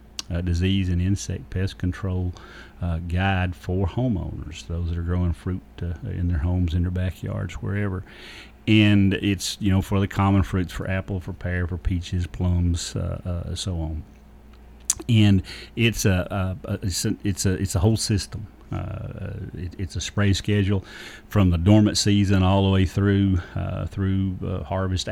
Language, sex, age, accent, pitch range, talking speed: English, male, 40-59, American, 90-100 Hz, 175 wpm